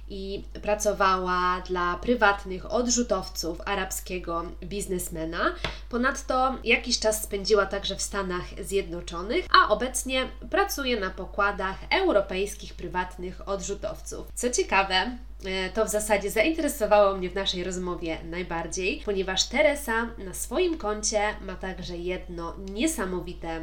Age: 20-39